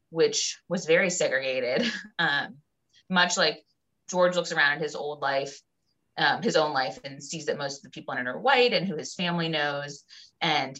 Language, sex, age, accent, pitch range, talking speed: English, female, 20-39, American, 150-200 Hz, 195 wpm